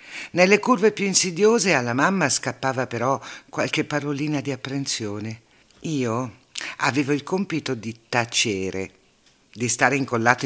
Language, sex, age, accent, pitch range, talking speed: Italian, female, 60-79, native, 120-175 Hz, 120 wpm